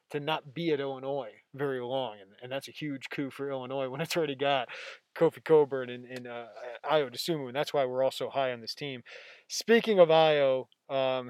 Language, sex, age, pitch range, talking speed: English, male, 20-39, 130-155 Hz, 210 wpm